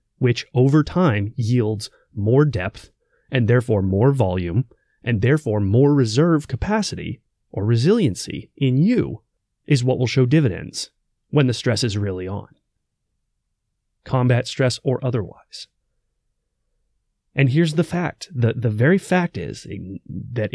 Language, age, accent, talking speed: English, 30-49, American, 130 wpm